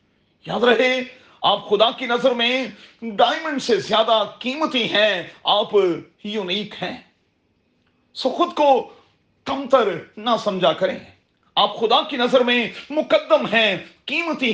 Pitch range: 175-245 Hz